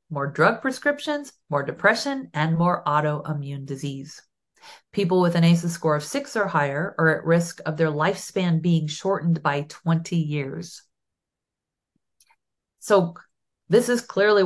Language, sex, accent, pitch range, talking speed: English, female, American, 155-200 Hz, 135 wpm